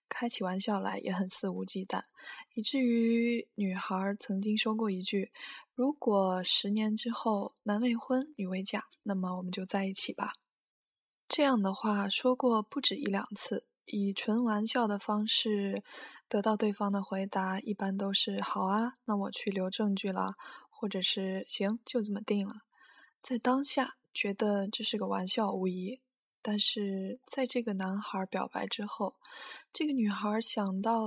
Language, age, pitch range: Chinese, 10-29, 195-230 Hz